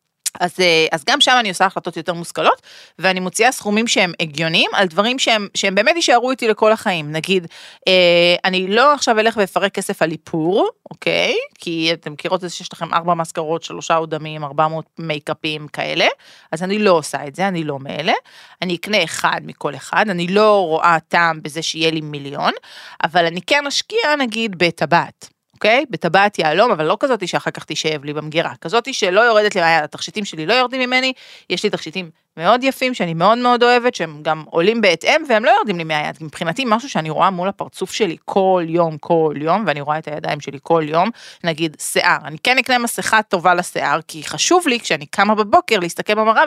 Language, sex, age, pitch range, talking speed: Hebrew, female, 30-49, 165-215 Hz, 195 wpm